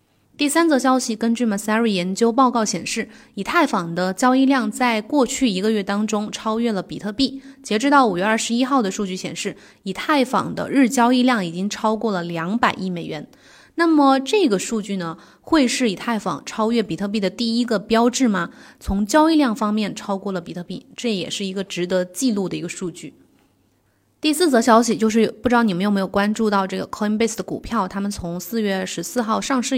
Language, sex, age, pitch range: Chinese, female, 20-39, 195-250 Hz